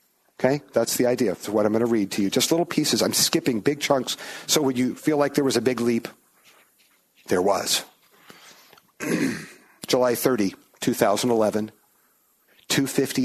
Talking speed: 155 wpm